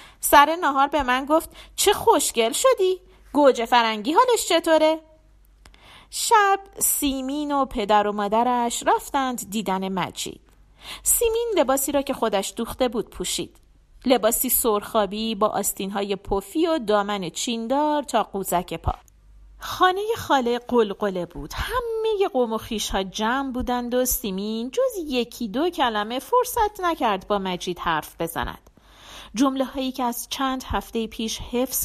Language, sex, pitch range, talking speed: Persian, female, 210-290 Hz, 130 wpm